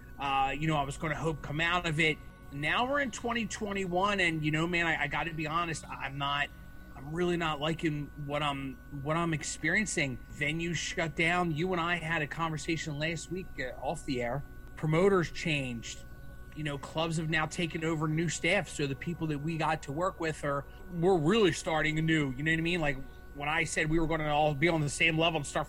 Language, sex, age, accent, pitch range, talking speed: English, male, 30-49, American, 145-170 Hz, 225 wpm